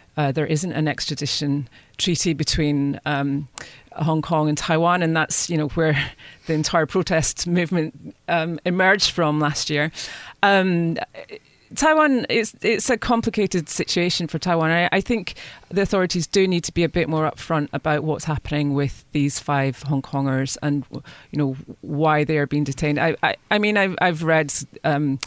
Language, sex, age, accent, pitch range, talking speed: English, female, 30-49, British, 140-170 Hz, 175 wpm